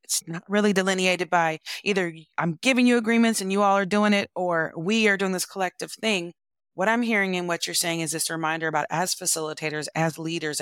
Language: English